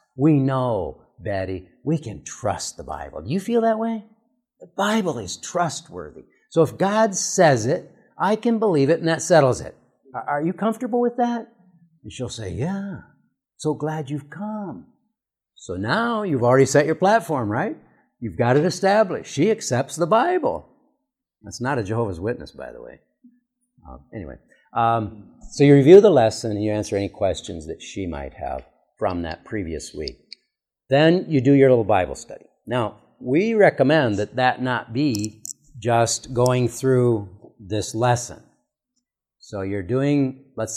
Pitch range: 110-175 Hz